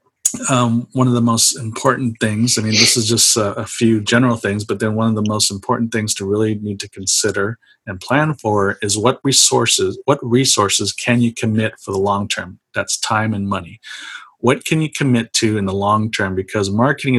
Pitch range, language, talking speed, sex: 100-120 Hz, English, 205 wpm, male